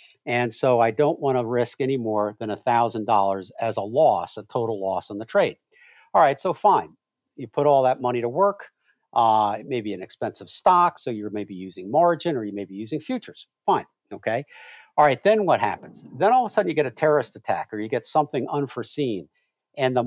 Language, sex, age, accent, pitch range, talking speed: English, male, 50-69, American, 115-165 Hz, 220 wpm